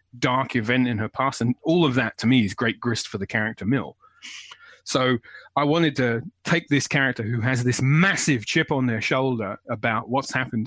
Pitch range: 115-140 Hz